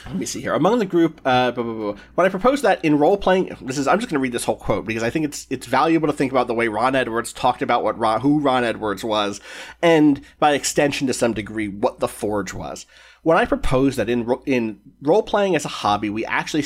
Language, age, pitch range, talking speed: English, 30-49, 110-170 Hz, 255 wpm